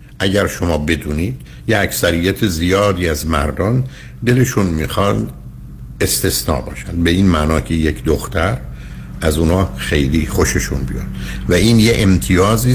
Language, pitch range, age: Persian, 80-120 Hz, 60-79